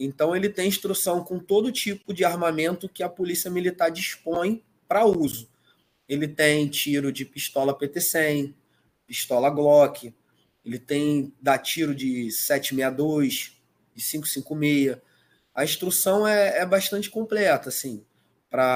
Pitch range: 140-180 Hz